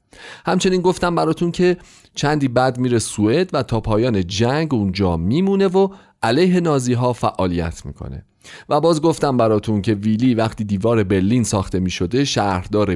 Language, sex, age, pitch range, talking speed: Persian, male, 40-59, 100-150 Hz, 150 wpm